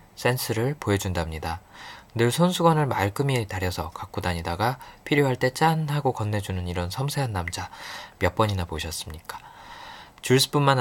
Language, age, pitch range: Korean, 20-39, 95-130 Hz